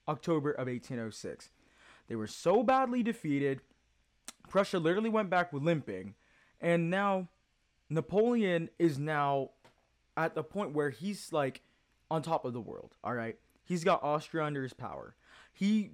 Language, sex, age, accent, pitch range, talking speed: English, male, 20-39, American, 135-195 Hz, 145 wpm